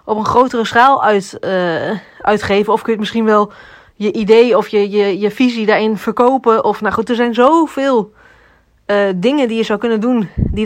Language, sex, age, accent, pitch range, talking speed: Dutch, female, 30-49, Dutch, 200-235 Hz, 195 wpm